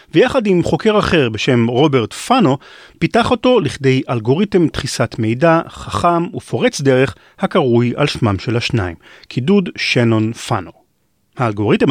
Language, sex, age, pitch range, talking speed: Hebrew, male, 40-59, 120-175 Hz, 125 wpm